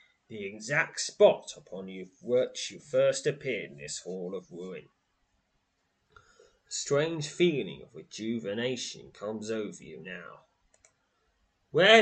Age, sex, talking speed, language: 30-49, male, 120 wpm, English